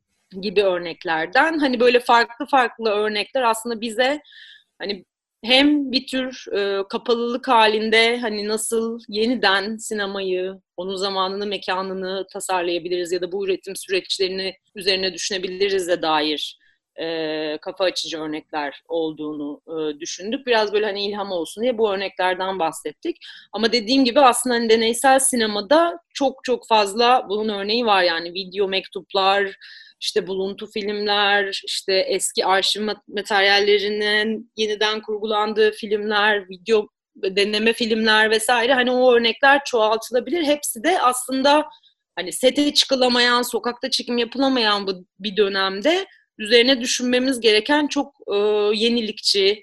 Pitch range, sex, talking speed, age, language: 195-250 Hz, female, 120 wpm, 30-49, Turkish